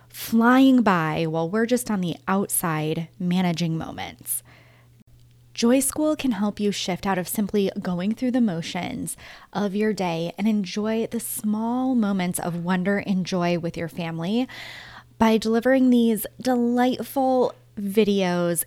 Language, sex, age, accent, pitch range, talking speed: English, female, 20-39, American, 175-235 Hz, 140 wpm